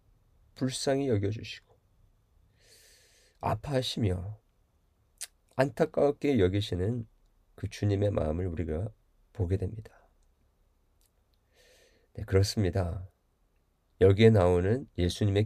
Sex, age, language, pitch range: male, 40-59, Korean, 90-110 Hz